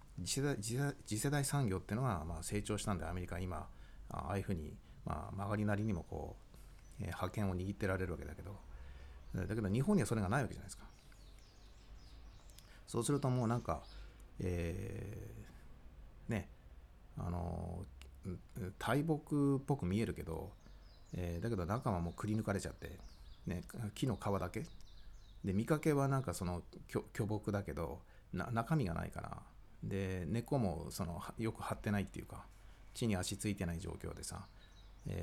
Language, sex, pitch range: Japanese, male, 90-115 Hz